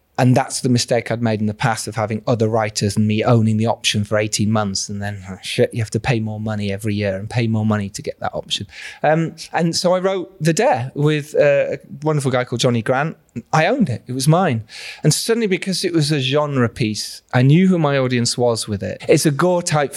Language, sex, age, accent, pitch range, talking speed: English, male, 30-49, British, 115-155 Hz, 240 wpm